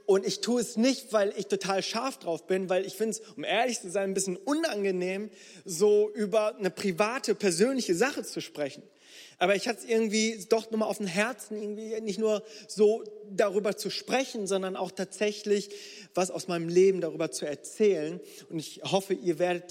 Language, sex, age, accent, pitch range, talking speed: German, male, 30-49, German, 180-225 Hz, 190 wpm